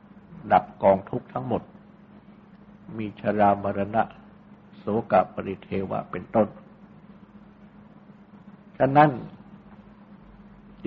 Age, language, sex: 60-79, Thai, male